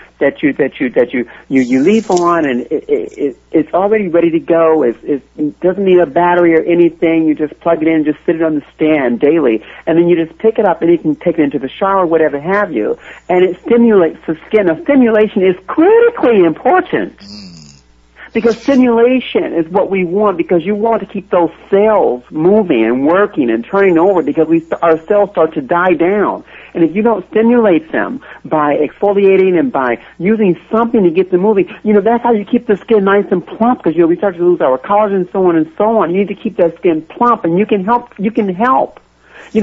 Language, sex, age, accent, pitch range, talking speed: English, male, 60-79, American, 165-220 Hz, 230 wpm